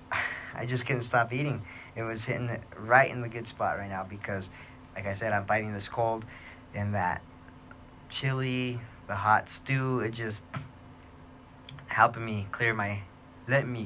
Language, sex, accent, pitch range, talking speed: English, male, American, 100-125 Hz, 165 wpm